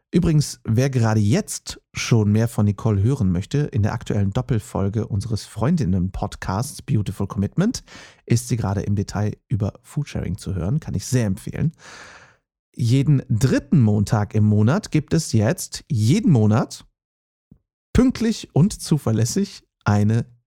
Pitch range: 105-140 Hz